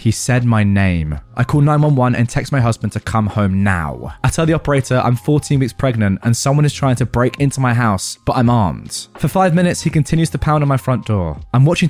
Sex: male